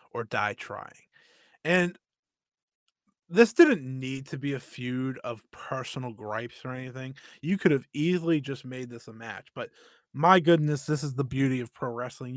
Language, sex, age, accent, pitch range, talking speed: English, male, 20-39, American, 120-150 Hz, 170 wpm